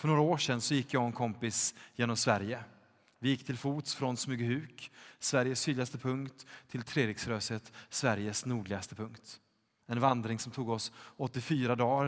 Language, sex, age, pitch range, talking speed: Swedish, male, 30-49, 110-135 Hz, 165 wpm